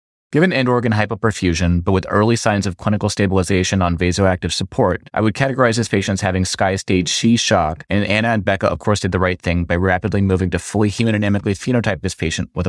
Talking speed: 205 wpm